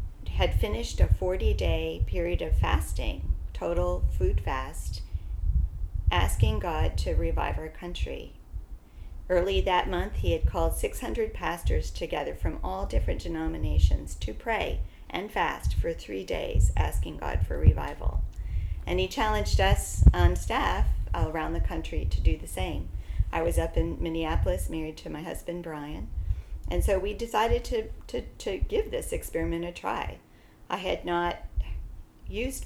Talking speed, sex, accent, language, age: 145 wpm, female, American, English, 40-59